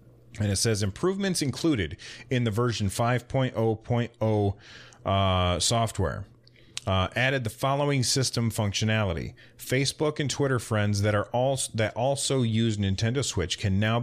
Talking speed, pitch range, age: 130 wpm, 95-120 Hz, 30-49